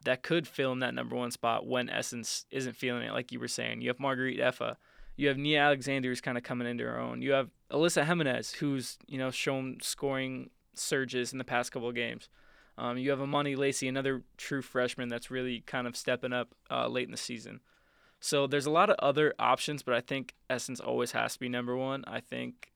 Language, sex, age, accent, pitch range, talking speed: English, male, 20-39, American, 125-140 Hz, 225 wpm